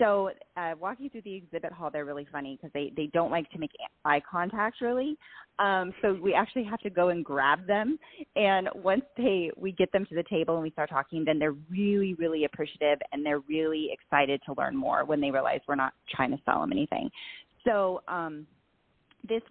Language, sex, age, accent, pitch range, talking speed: English, female, 30-49, American, 145-185 Hz, 210 wpm